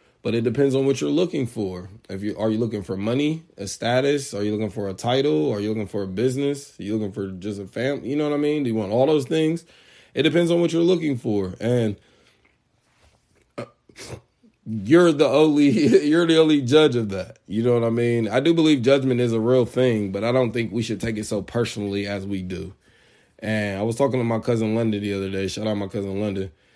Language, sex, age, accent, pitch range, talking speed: English, male, 20-39, American, 105-140 Hz, 240 wpm